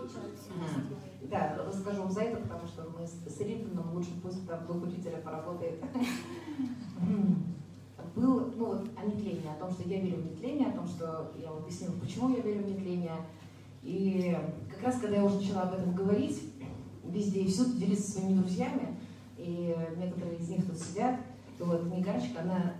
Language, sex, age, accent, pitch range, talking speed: Russian, female, 30-49, native, 170-210 Hz, 155 wpm